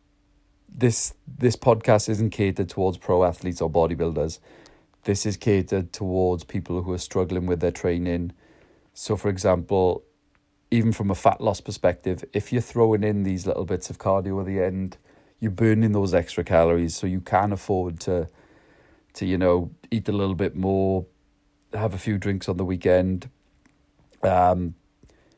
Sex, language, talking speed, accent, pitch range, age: male, English, 160 wpm, British, 90-105 Hz, 30-49